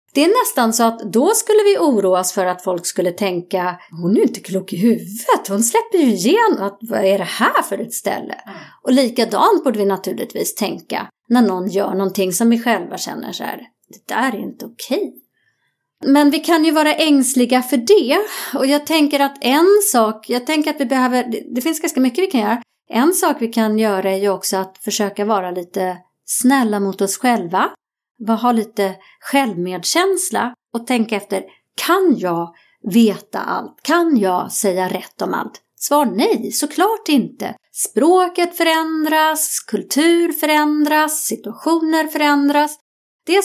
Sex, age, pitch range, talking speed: female, 30-49, 195-310 Hz, 170 wpm